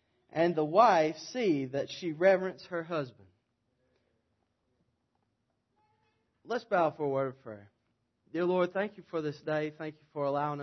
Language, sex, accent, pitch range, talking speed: English, male, American, 120-180 Hz, 150 wpm